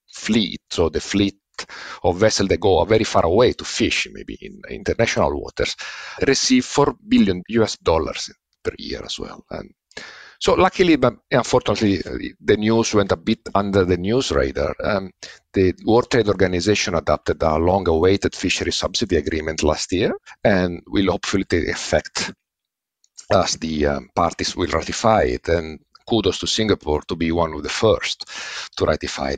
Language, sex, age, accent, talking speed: English, male, 50-69, Italian, 160 wpm